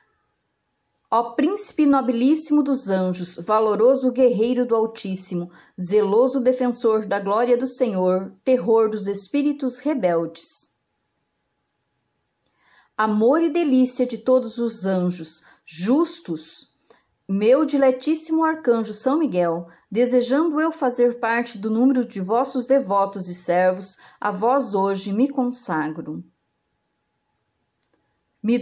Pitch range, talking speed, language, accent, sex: 195-265 Hz, 105 wpm, Portuguese, Brazilian, female